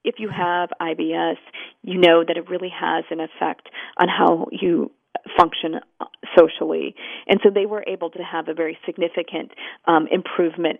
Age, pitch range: 40-59, 165-200 Hz